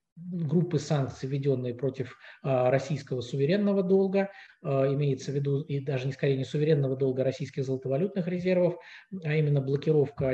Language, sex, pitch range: Russian, male, 130-155 Hz